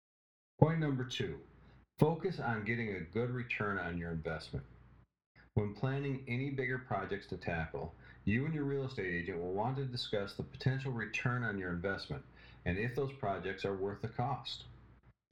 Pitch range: 95-130 Hz